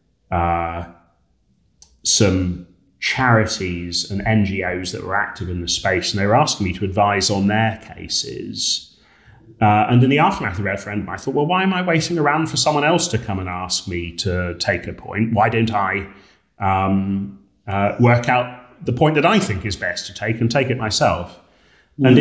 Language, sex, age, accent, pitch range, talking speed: English, male, 30-49, British, 95-120 Hz, 190 wpm